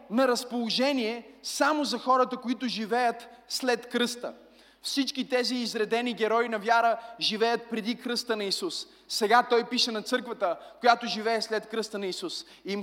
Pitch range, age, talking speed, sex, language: 200-245 Hz, 20-39, 155 wpm, male, Bulgarian